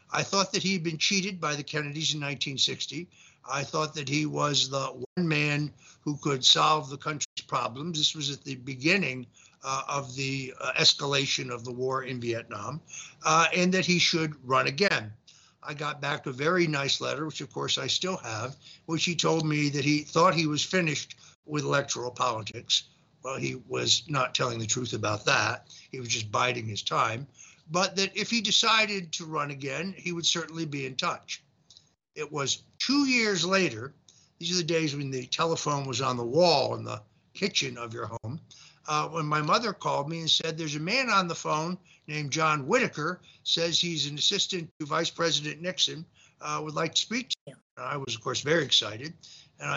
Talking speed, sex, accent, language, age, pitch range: 200 wpm, male, American, English, 60-79, 135-170 Hz